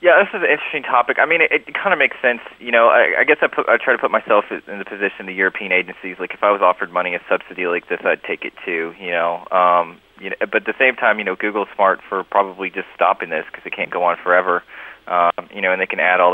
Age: 30-49